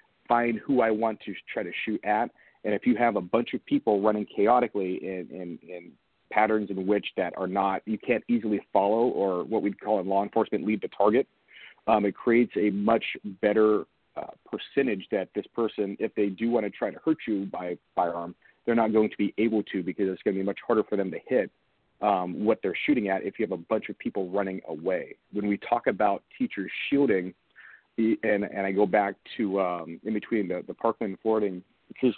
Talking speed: 215 wpm